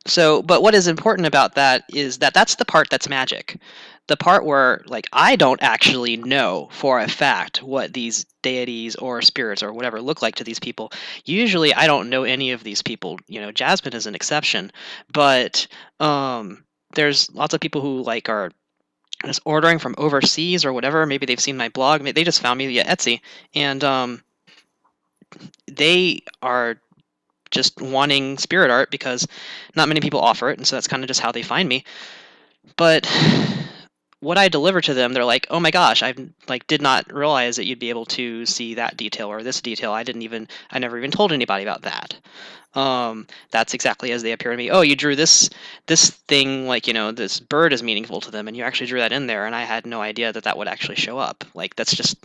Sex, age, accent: male, 20-39, American